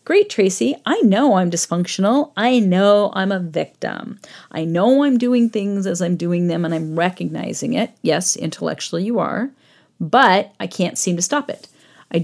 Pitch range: 175-235 Hz